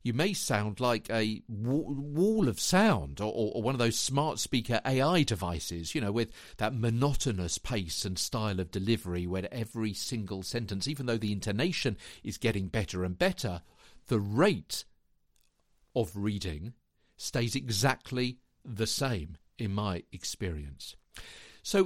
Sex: male